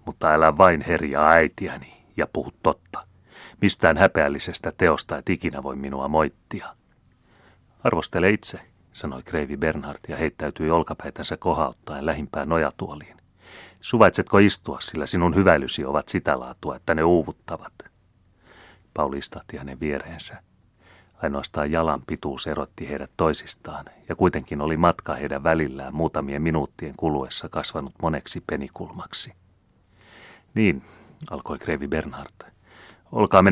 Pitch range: 75-90 Hz